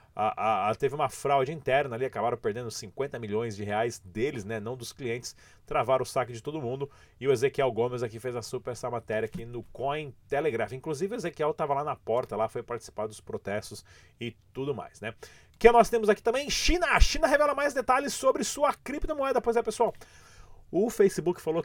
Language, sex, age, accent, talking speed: Portuguese, male, 30-49, Brazilian, 205 wpm